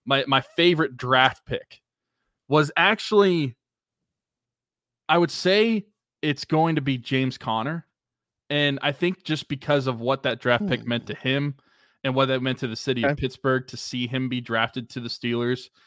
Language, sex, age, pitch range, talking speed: English, male, 20-39, 120-140 Hz, 175 wpm